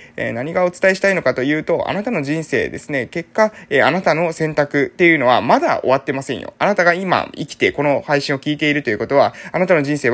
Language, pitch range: Japanese, 130-185 Hz